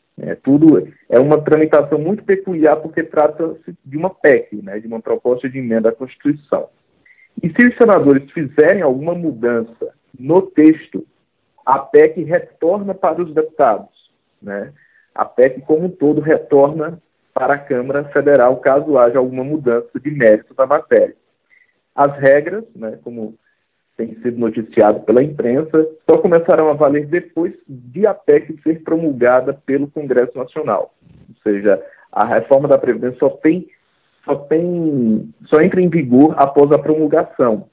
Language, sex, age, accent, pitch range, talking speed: Portuguese, male, 40-59, Brazilian, 130-165 Hz, 145 wpm